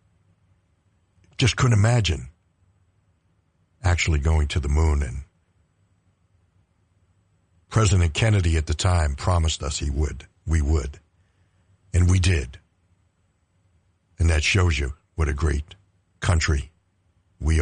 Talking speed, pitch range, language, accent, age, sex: 110 wpm, 80-95 Hz, English, American, 60-79, male